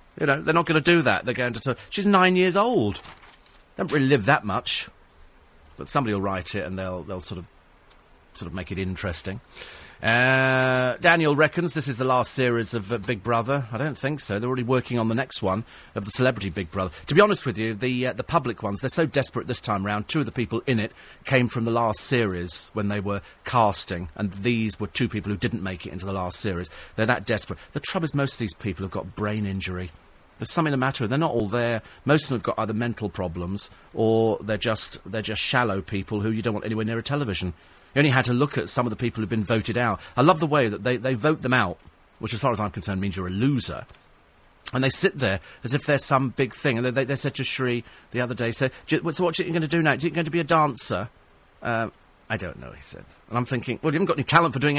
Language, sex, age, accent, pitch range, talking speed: English, male, 40-59, British, 100-140 Hz, 265 wpm